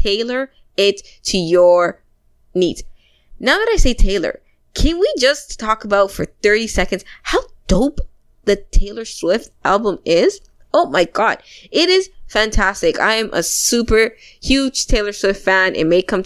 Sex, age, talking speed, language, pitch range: female, 20-39, 155 wpm, English, 170-205 Hz